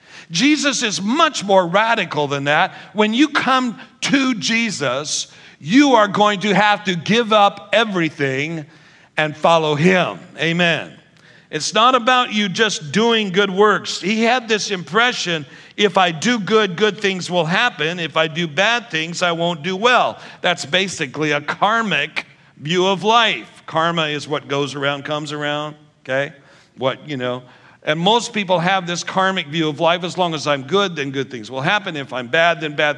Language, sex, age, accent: English, male, 50-69, American